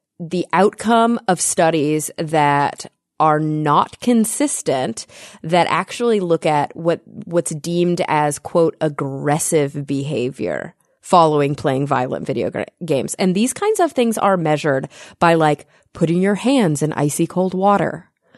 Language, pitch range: English, 150-185 Hz